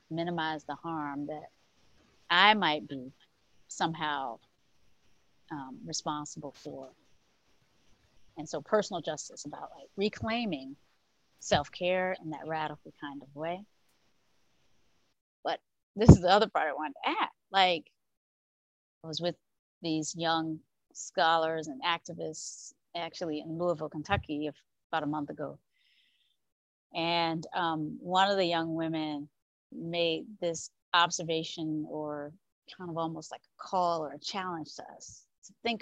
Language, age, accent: English, 30-49, American